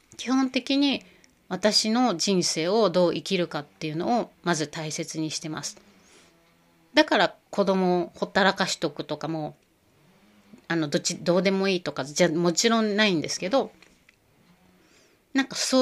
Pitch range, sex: 160-220 Hz, female